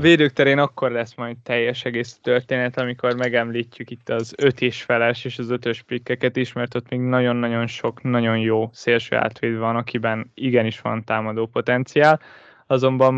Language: Hungarian